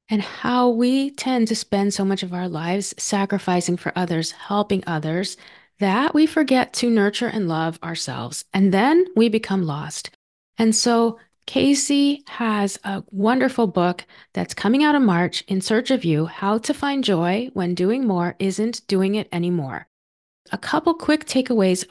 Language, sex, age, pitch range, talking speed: English, female, 30-49, 175-235 Hz, 165 wpm